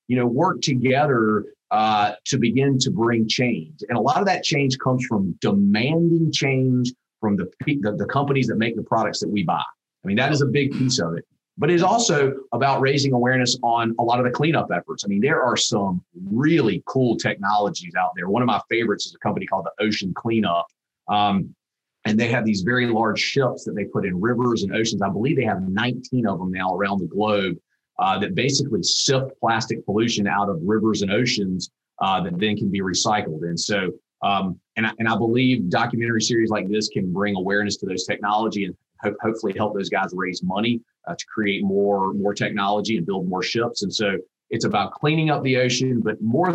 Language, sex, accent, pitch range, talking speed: English, male, American, 105-130 Hz, 210 wpm